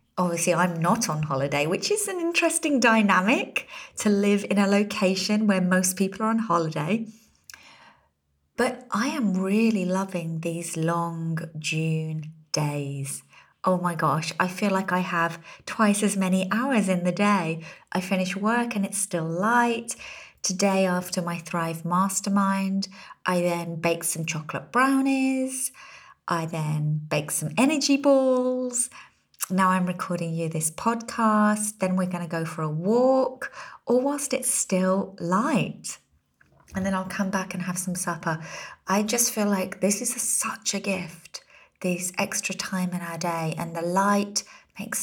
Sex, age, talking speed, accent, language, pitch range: female, 30-49, 155 wpm, British, English, 170-220 Hz